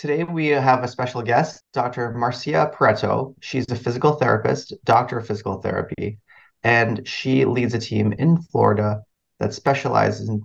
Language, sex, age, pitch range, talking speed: English, male, 30-49, 105-125 Hz, 155 wpm